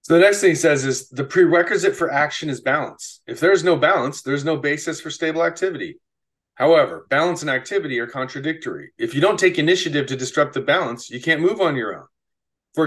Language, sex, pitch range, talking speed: English, male, 120-165 Hz, 215 wpm